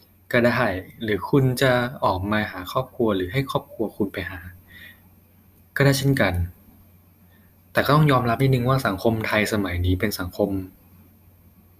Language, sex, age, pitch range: Thai, male, 20-39, 95-110 Hz